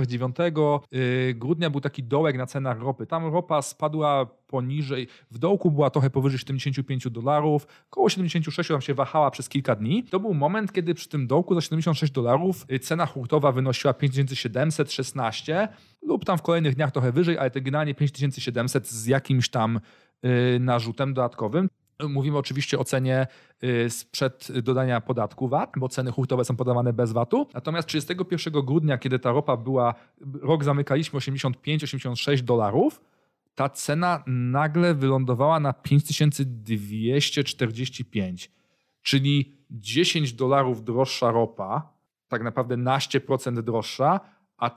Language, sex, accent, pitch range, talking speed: Polish, male, native, 125-155 Hz, 135 wpm